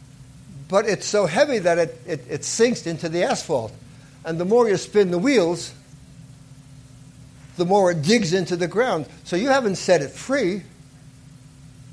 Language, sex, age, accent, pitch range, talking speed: English, male, 60-79, American, 135-170 Hz, 160 wpm